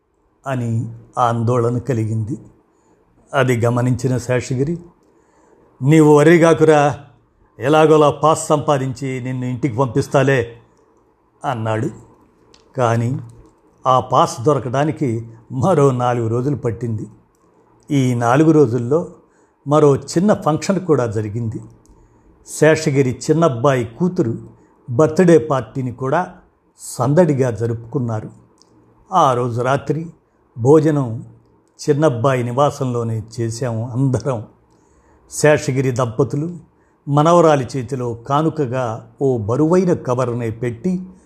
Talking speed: 80 wpm